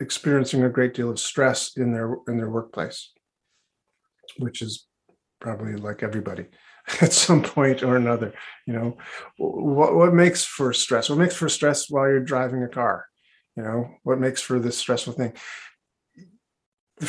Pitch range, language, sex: 120-135 Hz, English, male